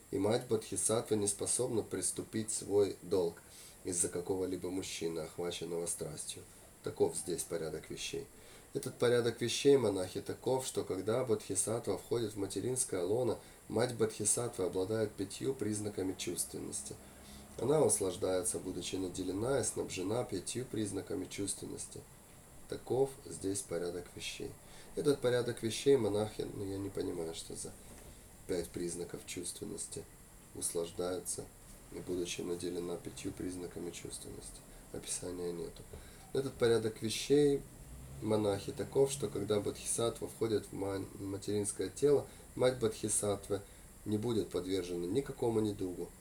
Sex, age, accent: male, 30-49, native